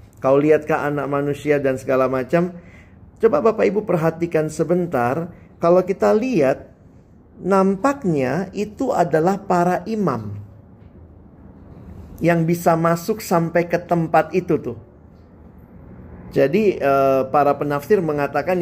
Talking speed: 105 wpm